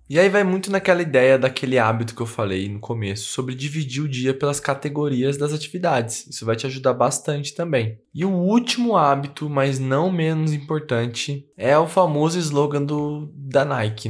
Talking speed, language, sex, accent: 180 wpm, Portuguese, male, Brazilian